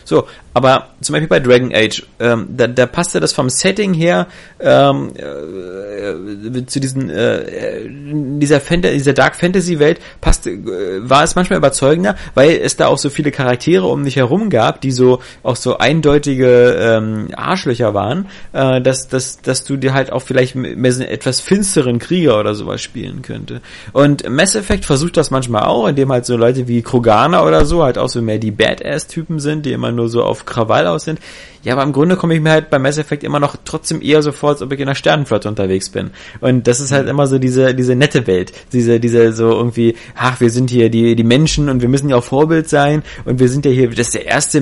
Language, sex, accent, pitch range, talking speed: German, male, German, 125-155 Hz, 215 wpm